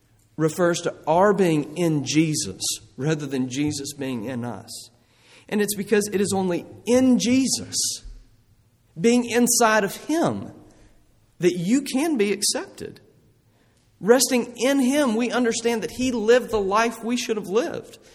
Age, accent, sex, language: 40-59, American, male, English